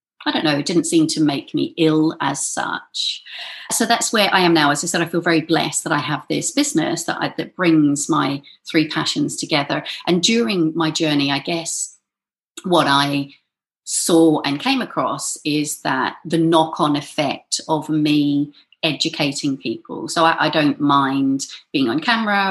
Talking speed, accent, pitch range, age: 175 wpm, British, 150-205 Hz, 40-59